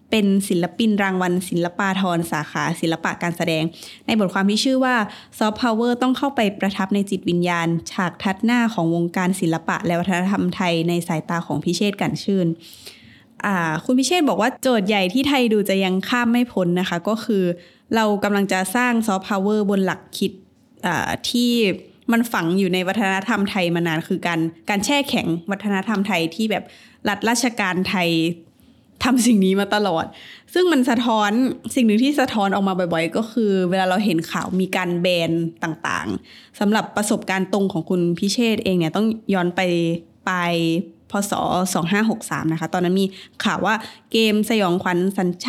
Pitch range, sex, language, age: 175-220 Hz, female, Thai, 20-39